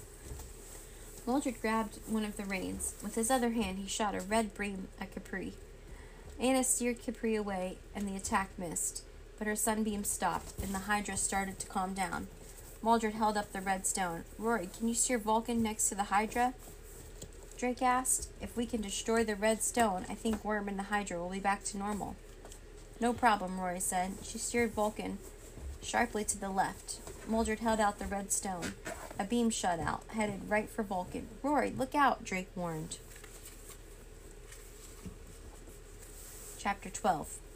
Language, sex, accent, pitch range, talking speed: English, female, American, 195-230 Hz, 165 wpm